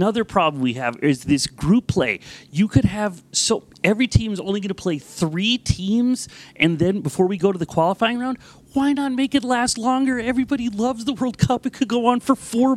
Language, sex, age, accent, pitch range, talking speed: English, male, 30-49, American, 170-240 Hz, 220 wpm